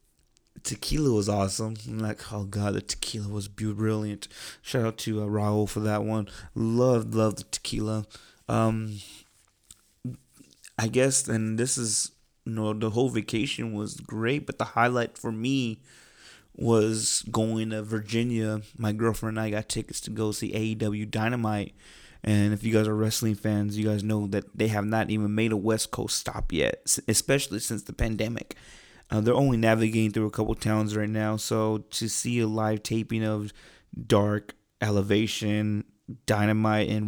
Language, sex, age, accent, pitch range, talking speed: English, male, 20-39, American, 105-115 Hz, 165 wpm